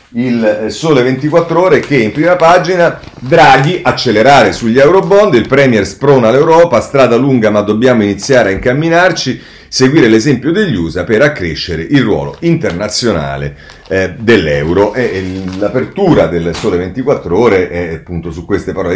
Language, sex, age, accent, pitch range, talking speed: Italian, male, 40-59, native, 100-140 Hz, 145 wpm